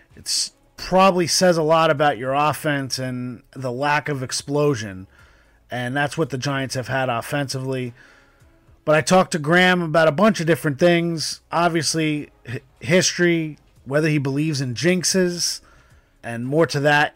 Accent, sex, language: American, male, English